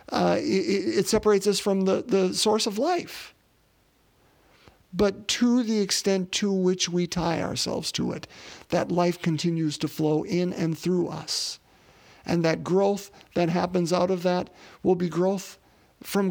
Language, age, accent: English, 50-69, American